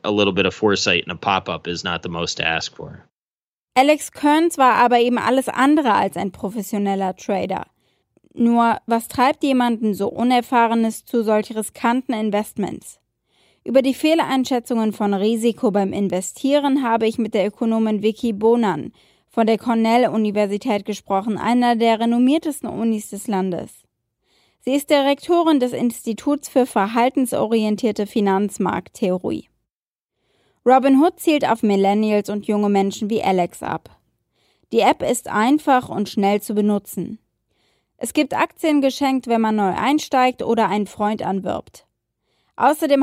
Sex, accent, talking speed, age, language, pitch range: female, German, 115 wpm, 20-39, German, 210-255 Hz